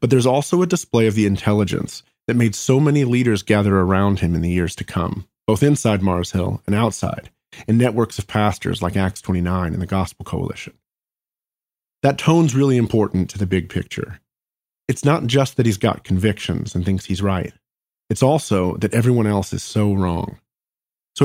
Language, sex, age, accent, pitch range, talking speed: English, male, 30-49, American, 100-125 Hz, 185 wpm